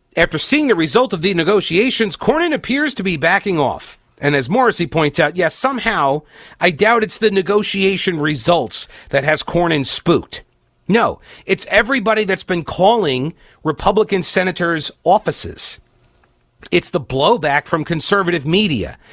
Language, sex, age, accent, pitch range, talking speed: English, male, 40-59, American, 145-200 Hz, 140 wpm